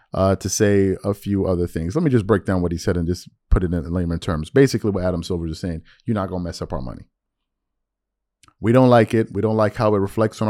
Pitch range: 90-110 Hz